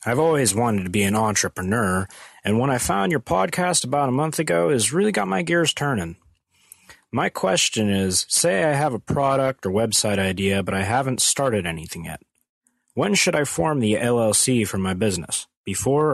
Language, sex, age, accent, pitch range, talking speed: English, male, 30-49, American, 95-120 Hz, 185 wpm